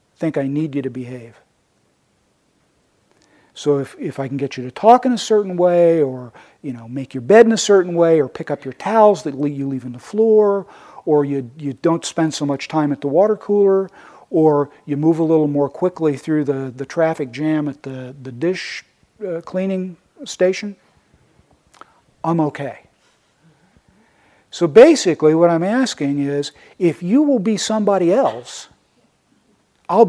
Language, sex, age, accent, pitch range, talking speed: English, male, 50-69, American, 140-195 Hz, 175 wpm